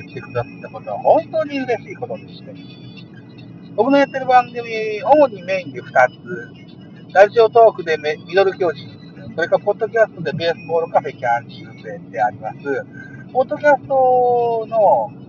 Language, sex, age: Japanese, male, 50-69